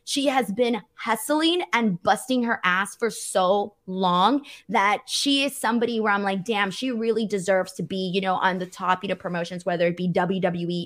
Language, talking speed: English, 210 wpm